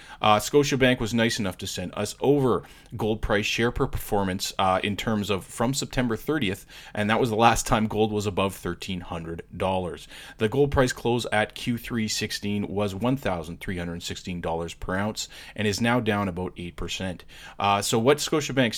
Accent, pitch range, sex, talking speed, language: American, 100-130 Hz, male, 180 wpm, English